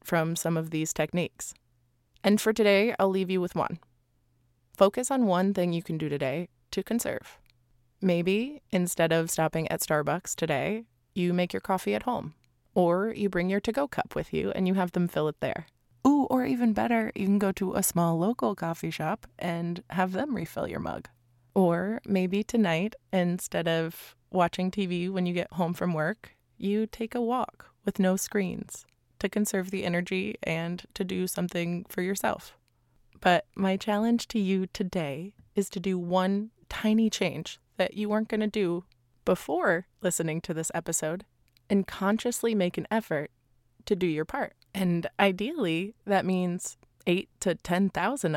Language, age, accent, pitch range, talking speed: English, 20-39, American, 165-200 Hz, 170 wpm